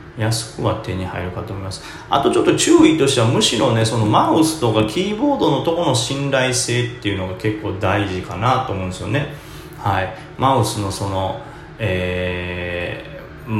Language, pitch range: Japanese, 100-135 Hz